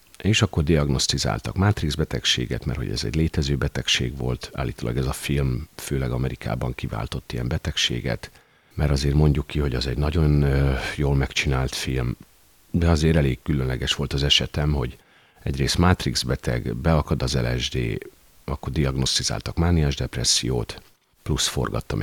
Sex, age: male, 50-69